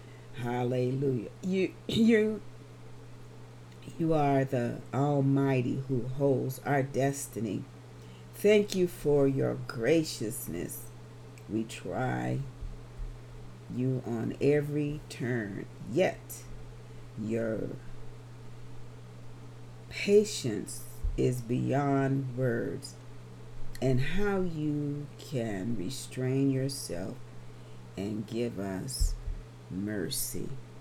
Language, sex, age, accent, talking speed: English, female, 40-59, American, 75 wpm